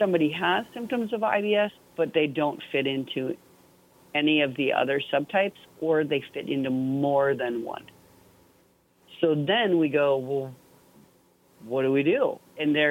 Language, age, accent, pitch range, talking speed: English, 50-69, American, 125-160 Hz, 155 wpm